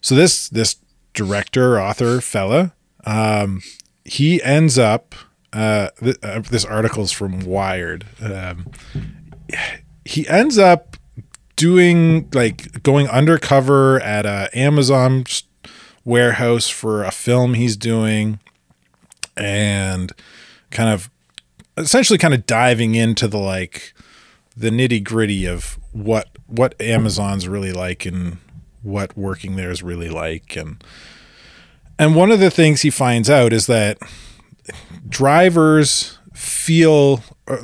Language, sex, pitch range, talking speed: English, male, 100-135 Hz, 120 wpm